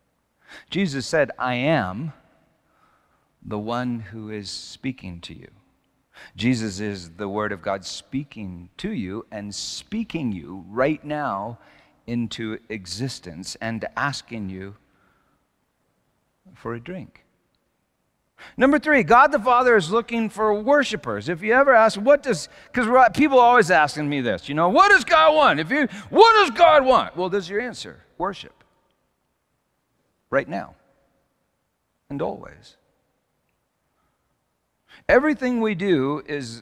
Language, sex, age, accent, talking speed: English, male, 50-69, American, 130 wpm